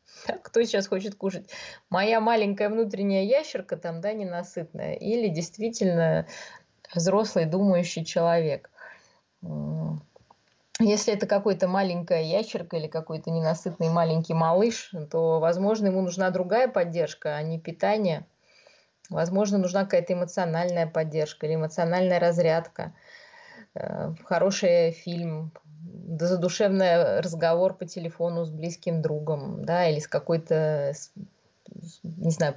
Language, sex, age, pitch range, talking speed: Russian, female, 20-39, 165-195 Hz, 105 wpm